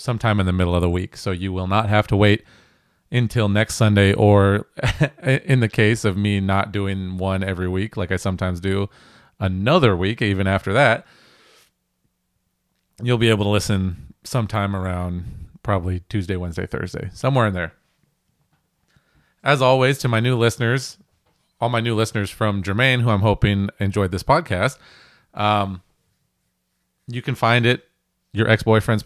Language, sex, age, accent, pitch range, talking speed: English, male, 30-49, American, 95-120 Hz, 155 wpm